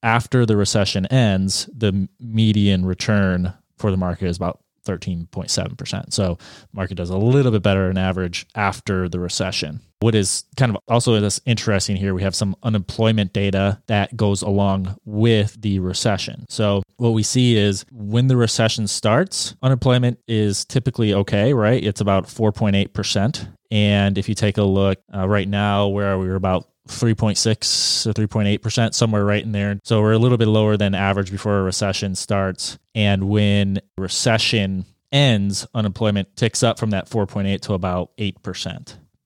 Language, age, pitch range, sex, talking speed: English, 20-39, 100-115 Hz, male, 165 wpm